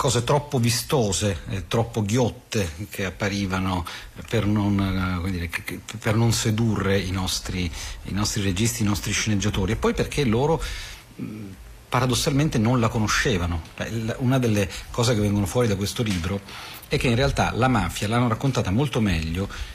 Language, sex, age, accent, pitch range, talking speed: Italian, male, 40-59, native, 95-120 Hz, 150 wpm